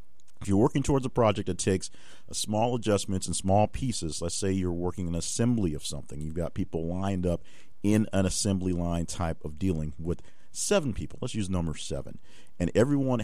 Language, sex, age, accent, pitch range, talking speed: English, male, 40-59, American, 85-100 Hz, 190 wpm